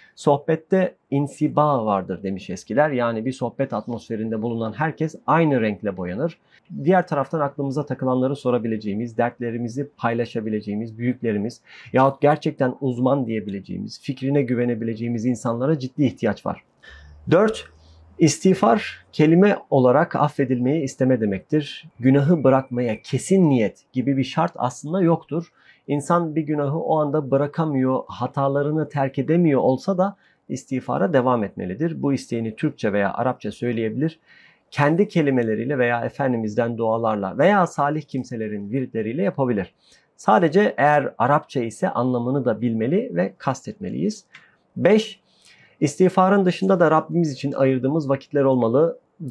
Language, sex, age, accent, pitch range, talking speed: Turkish, male, 40-59, native, 115-155 Hz, 120 wpm